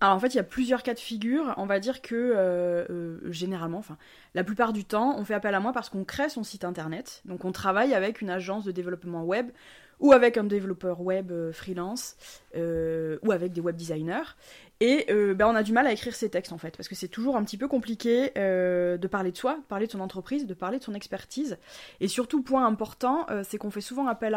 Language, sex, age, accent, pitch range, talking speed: French, female, 20-39, French, 185-245 Hz, 245 wpm